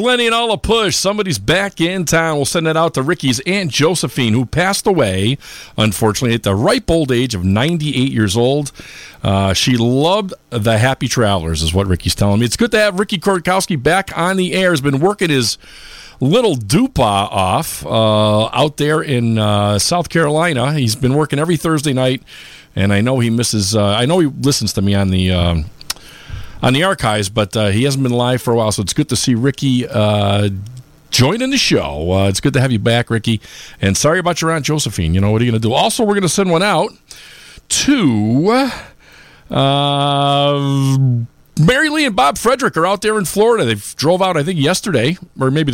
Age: 50-69